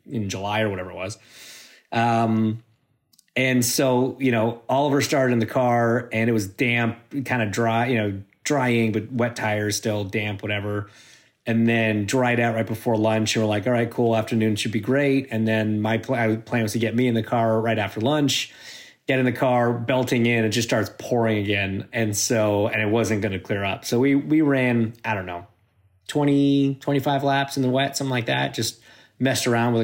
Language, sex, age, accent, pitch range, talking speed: English, male, 30-49, American, 110-130 Hz, 205 wpm